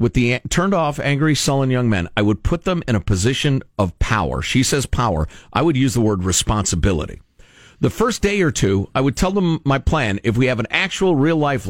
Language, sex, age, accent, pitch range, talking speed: English, male, 50-69, American, 110-170 Hz, 215 wpm